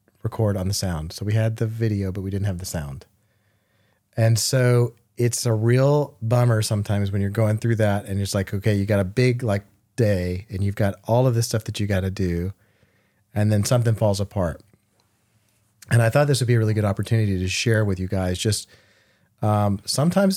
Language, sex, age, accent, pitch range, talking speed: English, male, 30-49, American, 100-125 Hz, 210 wpm